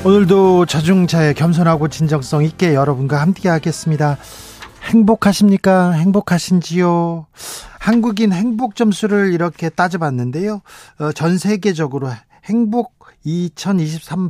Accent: native